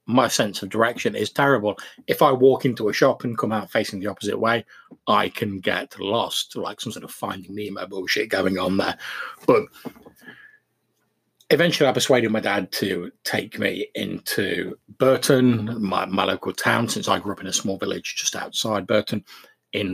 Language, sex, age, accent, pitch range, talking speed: English, male, 40-59, British, 105-125 Hz, 180 wpm